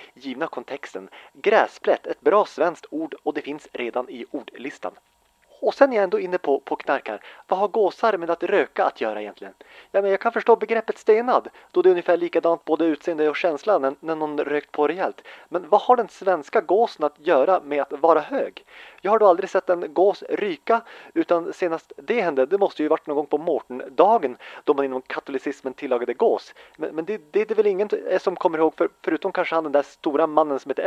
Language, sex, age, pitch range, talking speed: Swedish, male, 30-49, 160-240 Hz, 220 wpm